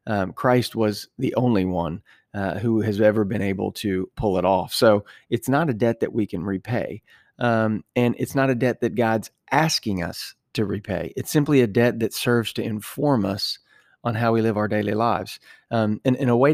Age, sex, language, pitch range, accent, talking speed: 30-49, male, English, 100-120 Hz, American, 210 wpm